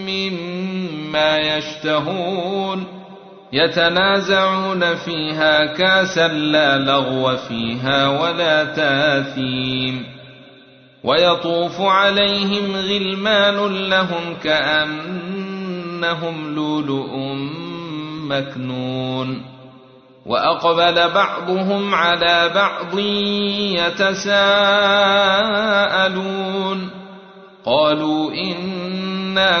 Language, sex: Arabic, male